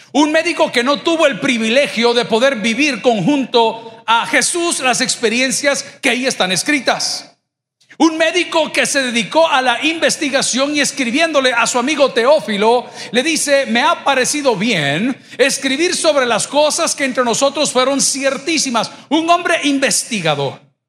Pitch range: 220-280 Hz